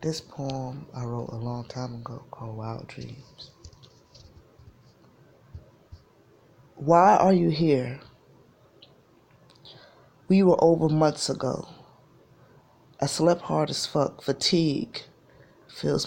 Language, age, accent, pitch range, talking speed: English, 20-39, American, 125-145 Hz, 100 wpm